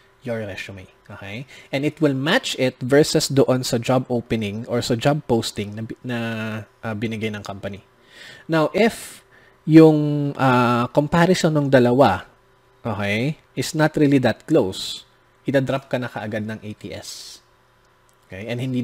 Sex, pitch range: male, 110-140 Hz